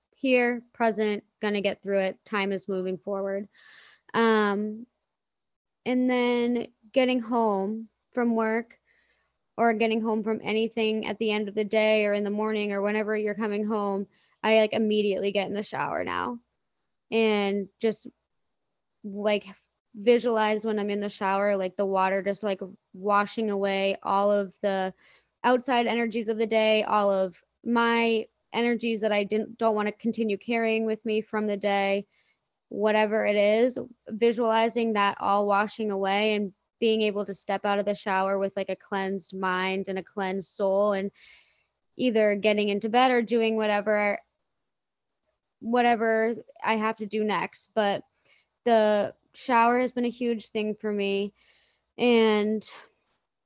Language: English